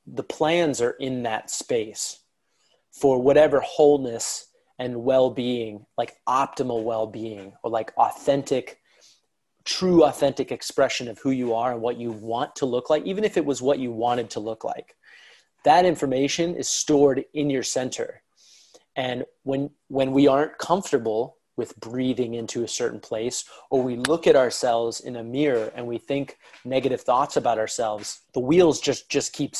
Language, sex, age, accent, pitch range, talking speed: English, male, 30-49, American, 120-145 Hz, 160 wpm